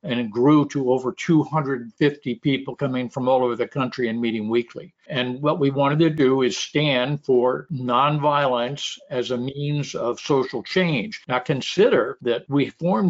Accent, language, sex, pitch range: American, English, male, 125-155 Hz